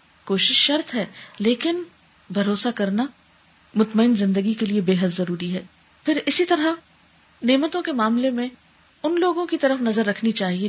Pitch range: 185-240 Hz